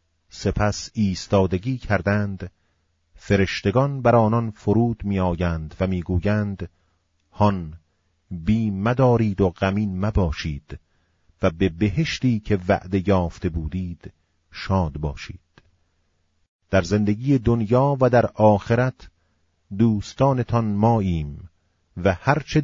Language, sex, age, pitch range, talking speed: Persian, male, 40-59, 85-110 Hz, 100 wpm